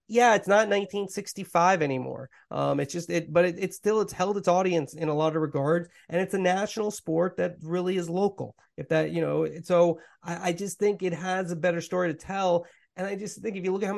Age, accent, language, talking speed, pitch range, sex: 30-49, American, English, 240 wpm, 155-190 Hz, male